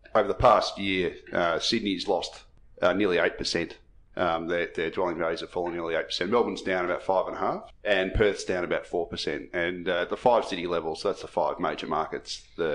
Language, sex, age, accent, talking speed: English, male, 30-49, Australian, 195 wpm